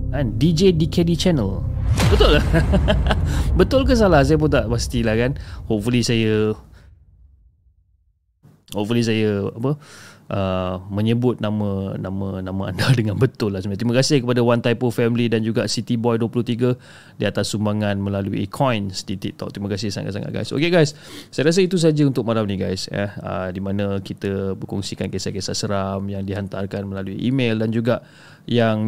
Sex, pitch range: male, 100-130 Hz